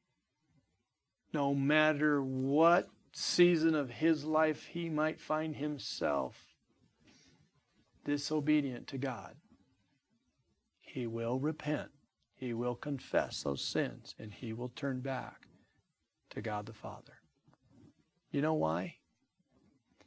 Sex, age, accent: male, 50-69, American